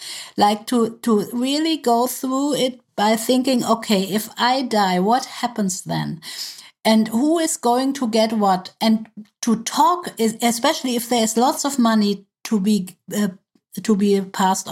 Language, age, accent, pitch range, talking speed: English, 50-69, German, 195-235 Hz, 165 wpm